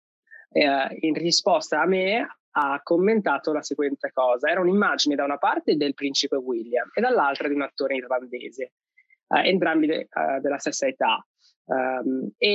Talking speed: 160 wpm